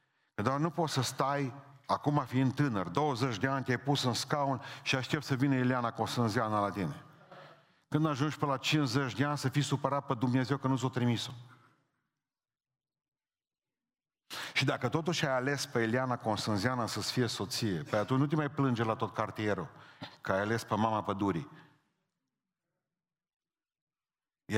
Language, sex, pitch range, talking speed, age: Romanian, male, 125-150 Hz, 160 wpm, 40-59